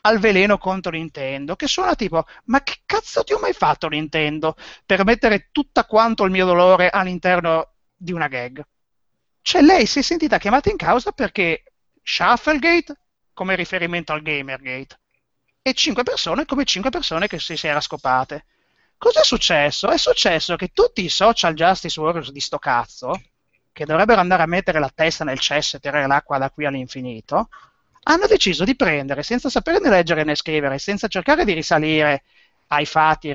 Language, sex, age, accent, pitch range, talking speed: Italian, male, 30-49, native, 155-235 Hz, 170 wpm